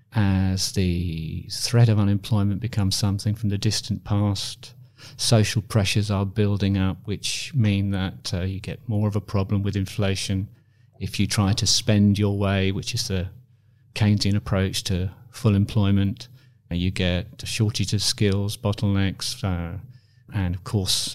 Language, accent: English, British